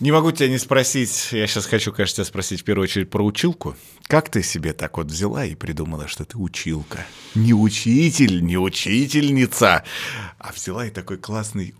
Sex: male